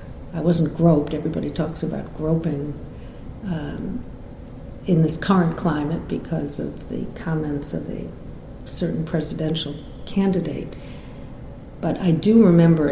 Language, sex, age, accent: English, female, 60-79, American